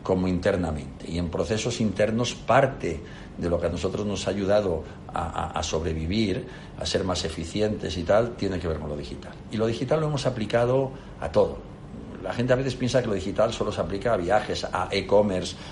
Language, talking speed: Spanish, 205 wpm